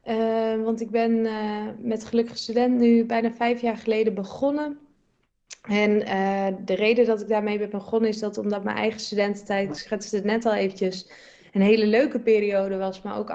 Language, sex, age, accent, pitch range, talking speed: Dutch, female, 20-39, Dutch, 195-225 Hz, 185 wpm